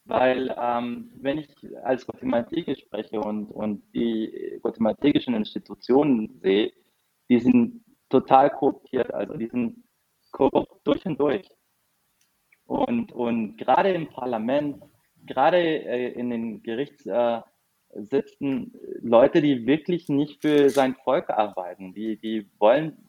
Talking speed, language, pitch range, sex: 120 wpm, German, 120-165 Hz, male